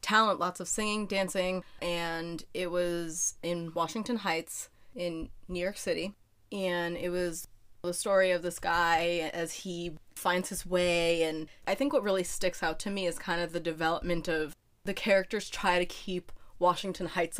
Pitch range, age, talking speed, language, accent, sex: 165-195 Hz, 20-39, 170 wpm, English, American, female